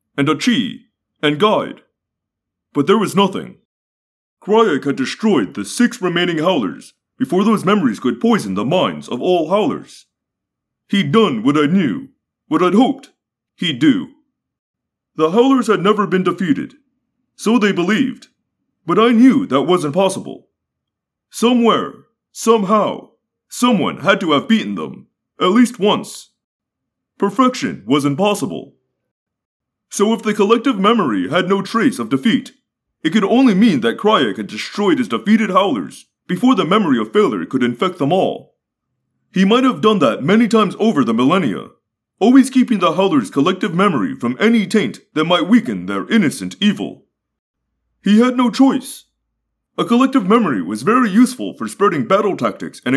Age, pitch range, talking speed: 30-49, 195-255 Hz, 155 wpm